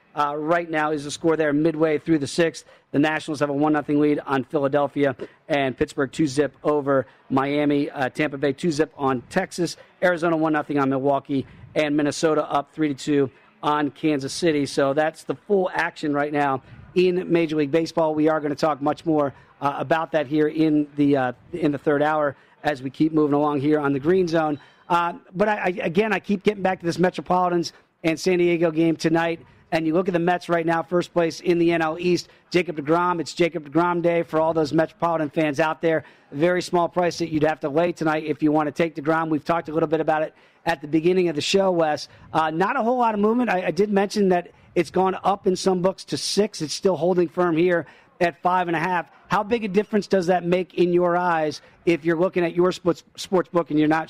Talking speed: 230 wpm